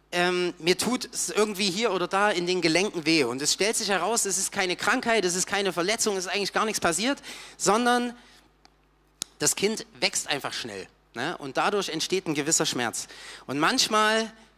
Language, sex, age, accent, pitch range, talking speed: German, male, 30-49, German, 170-215 Hz, 190 wpm